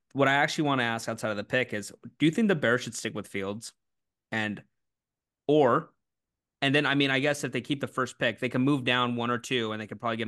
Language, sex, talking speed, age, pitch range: English, male, 270 wpm, 20-39, 110-140 Hz